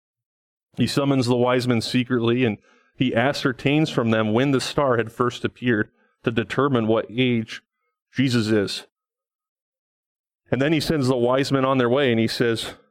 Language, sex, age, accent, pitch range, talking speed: English, male, 30-49, American, 115-145 Hz, 165 wpm